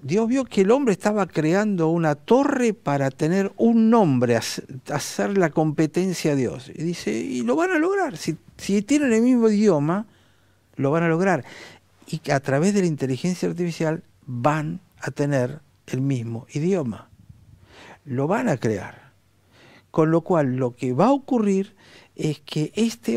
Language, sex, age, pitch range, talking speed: Spanish, male, 50-69, 125-175 Hz, 165 wpm